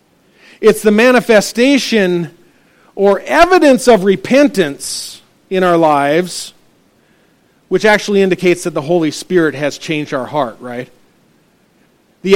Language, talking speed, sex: English, 110 wpm, male